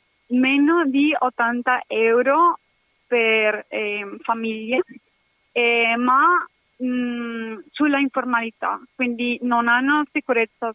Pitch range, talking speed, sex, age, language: 230-265 Hz, 90 wpm, female, 20-39, Italian